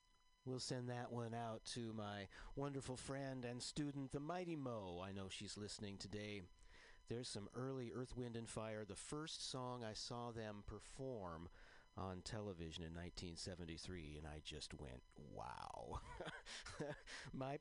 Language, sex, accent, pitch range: English, male, American, 95-130 Hz